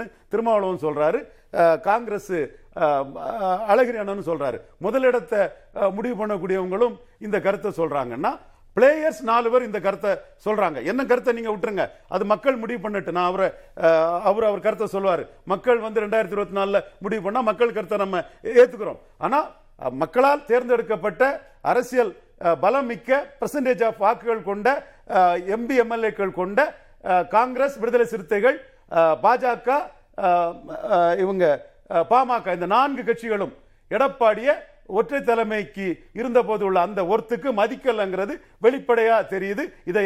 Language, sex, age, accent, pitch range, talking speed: Tamil, male, 40-59, native, 190-245 Hz, 40 wpm